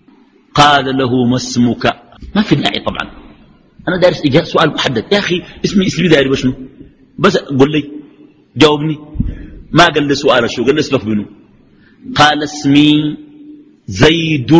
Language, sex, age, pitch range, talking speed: Arabic, male, 50-69, 135-195 Hz, 135 wpm